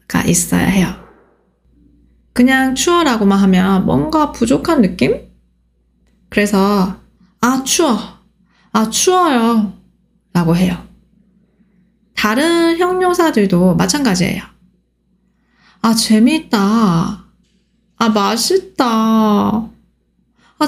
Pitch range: 190-250 Hz